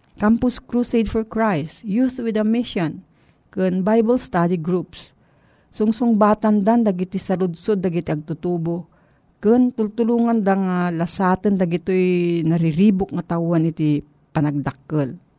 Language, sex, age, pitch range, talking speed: Filipino, female, 50-69, 165-215 Hz, 120 wpm